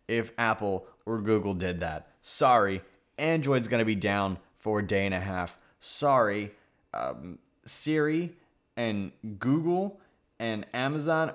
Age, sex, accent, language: 20-39, male, American, English